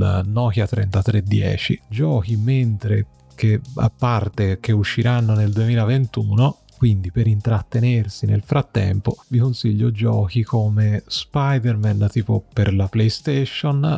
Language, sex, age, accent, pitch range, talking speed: Italian, male, 30-49, native, 100-120 Hz, 105 wpm